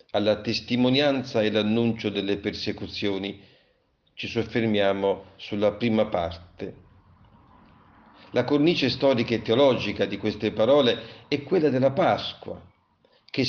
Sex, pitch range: male, 105-130 Hz